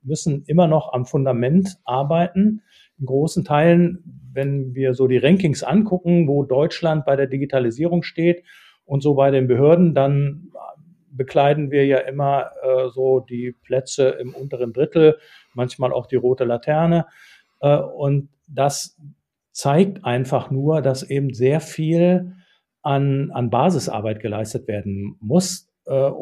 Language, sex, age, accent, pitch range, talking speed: German, male, 40-59, German, 130-155 Hz, 135 wpm